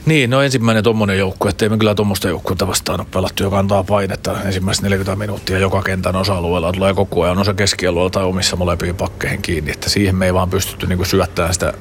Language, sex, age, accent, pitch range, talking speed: Finnish, male, 30-49, native, 95-110 Hz, 205 wpm